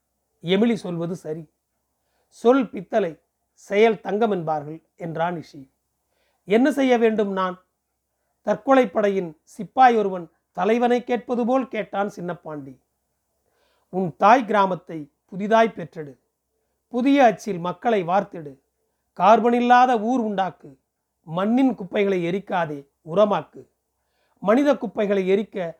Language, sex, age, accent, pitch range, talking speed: Tamil, male, 40-59, native, 180-235 Hz, 95 wpm